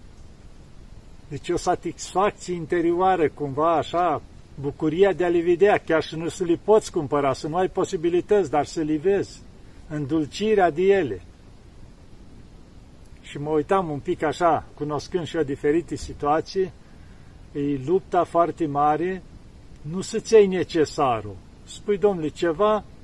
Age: 50-69